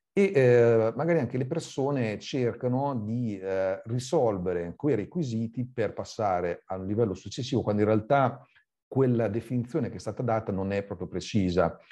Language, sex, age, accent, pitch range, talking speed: Italian, male, 40-59, native, 95-115 Hz, 150 wpm